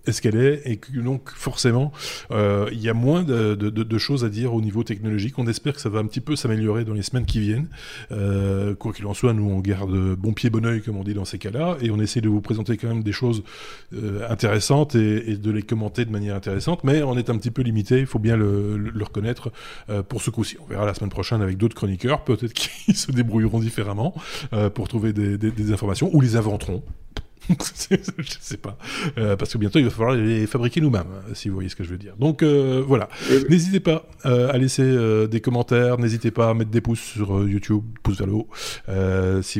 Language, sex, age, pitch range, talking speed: French, male, 20-39, 105-130 Hz, 240 wpm